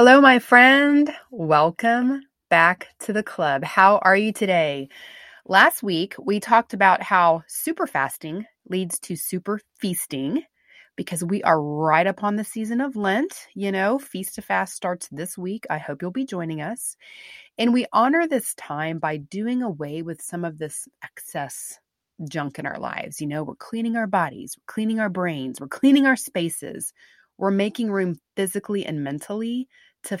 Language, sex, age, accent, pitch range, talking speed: English, female, 30-49, American, 160-215 Hz, 170 wpm